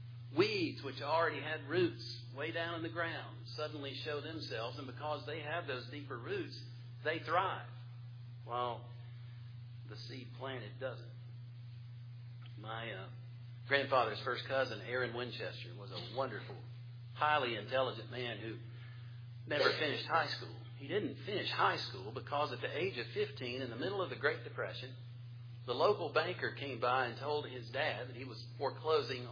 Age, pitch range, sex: 50-69, 120-130 Hz, male